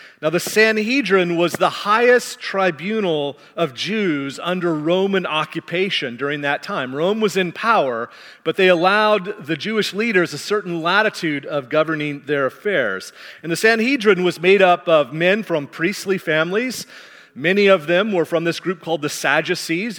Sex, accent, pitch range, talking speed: male, American, 155-195 Hz, 160 wpm